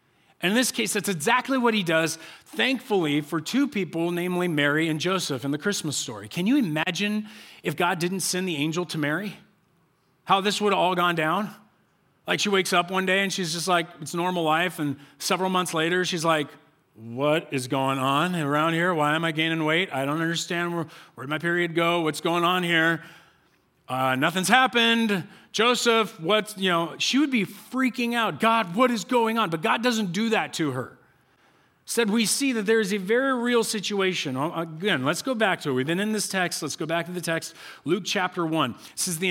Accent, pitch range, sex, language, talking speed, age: American, 160-210 Hz, male, English, 210 wpm, 40-59